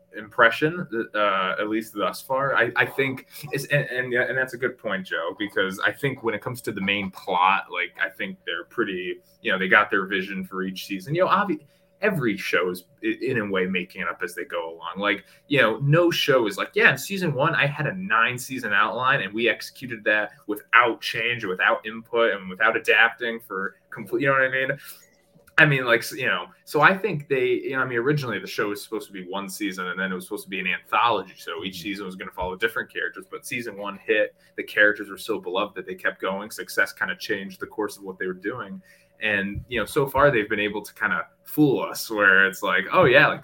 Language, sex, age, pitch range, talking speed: English, male, 20-39, 110-185 Hz, 245 wpm